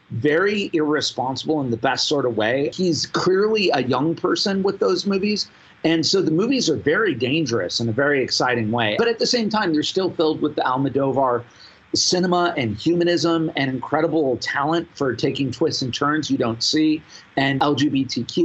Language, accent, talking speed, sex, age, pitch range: English, American, 180 wpm, male, 40-59, 130-175 Hz